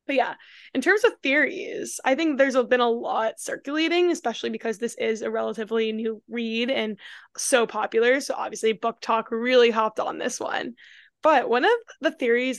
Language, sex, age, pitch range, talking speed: English, female, 10-29, 225-260 Hz, 180 wpm